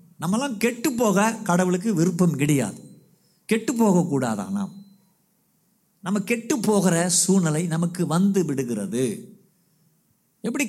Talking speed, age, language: 90 wpm, 50-69, Tamil